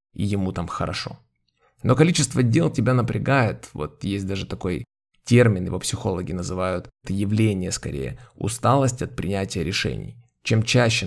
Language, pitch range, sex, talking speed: Ukrainian, 95-125 Hz, male, 140 wpm